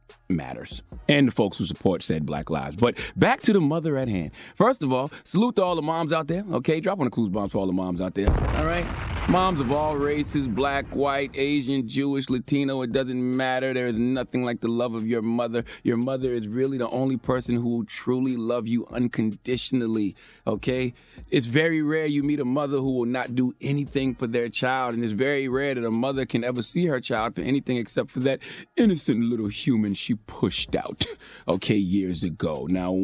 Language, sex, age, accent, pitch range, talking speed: English, male, 30-49, American, 115-145 Hz, 215 wpm